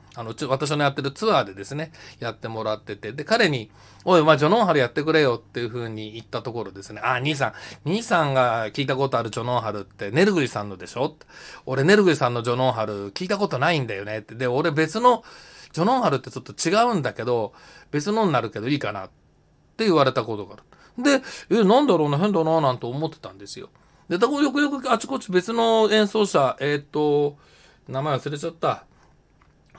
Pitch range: 115-165 Hz